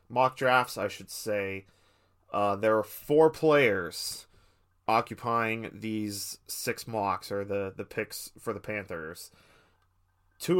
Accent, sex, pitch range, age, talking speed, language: American, male, 100-120 Hz, 30-49, 125 wpm, English